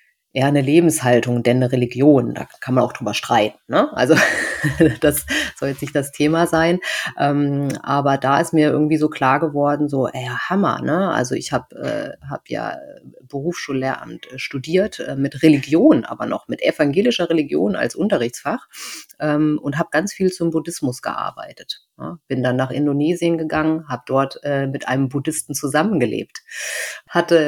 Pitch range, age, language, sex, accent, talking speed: 135-155 Hz, 30-49, German, female, German, 155 wpm